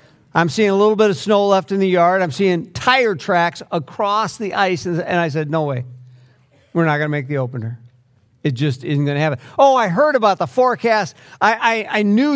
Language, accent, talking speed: English, American, 230 wpm